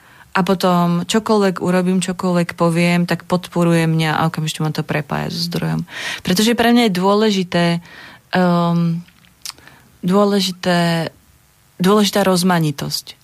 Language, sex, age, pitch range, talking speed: Slovak, female, 30-49, 165-190 Hz, 100 wpm